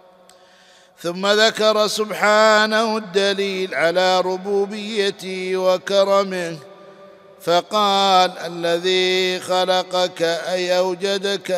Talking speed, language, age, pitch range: 60 wpm, Arabic, 50-69, 180-195 Hz